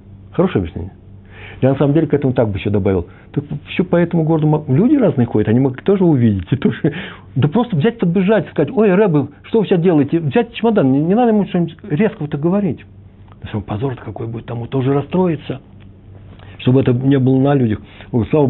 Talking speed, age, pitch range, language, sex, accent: 200 wpm, 60-79, 100-130 Hz, Russian, male, native